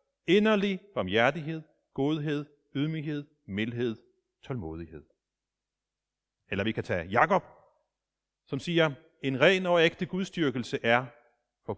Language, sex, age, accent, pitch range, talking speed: Danish, male, 40-59, native, 115-180 Hz, 100 wpm